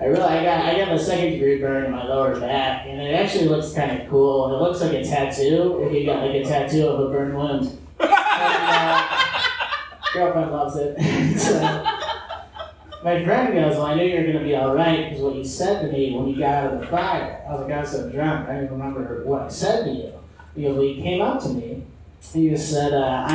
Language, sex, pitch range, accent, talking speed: English, male, 140-165 Hz, American, 245 wpm